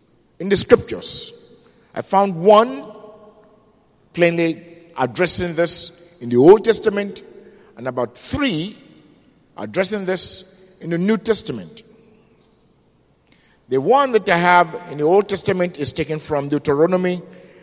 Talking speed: 115 wpm